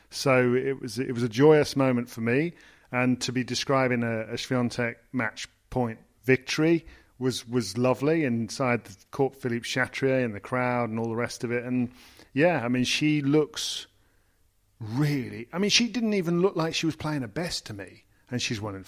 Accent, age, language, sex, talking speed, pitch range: British, 40-59, English, male, 195 wpm, 120-155 Hz